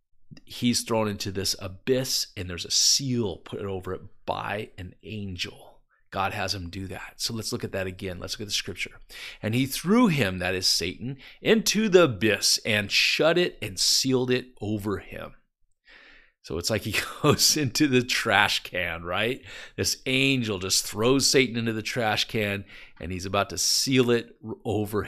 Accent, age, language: American, 40-59, English